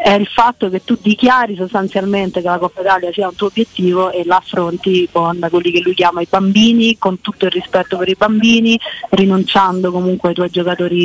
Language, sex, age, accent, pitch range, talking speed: Italian, female, 30-49, native, 180-230 Hz, 200 wpm